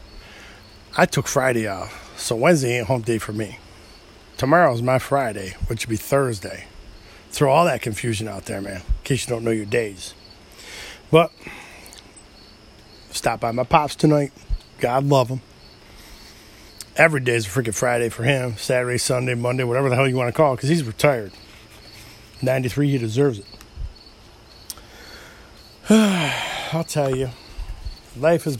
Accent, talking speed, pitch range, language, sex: American, 145 wpm, 110-150 Hz, English, male